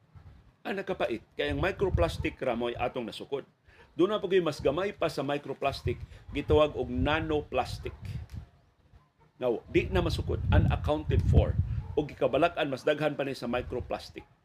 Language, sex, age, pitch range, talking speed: Filipino, male, 40-59, 100-155 Hz, 135 wpm